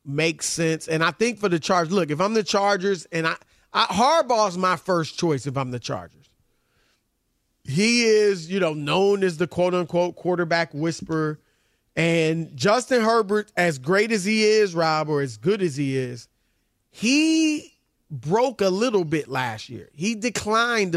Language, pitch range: English, 150-205 Hz